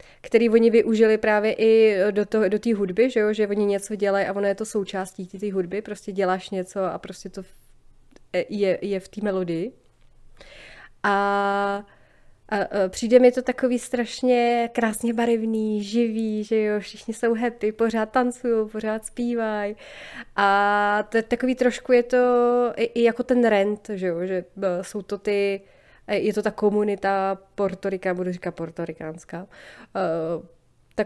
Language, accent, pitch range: Czech, native, 190-215 Hz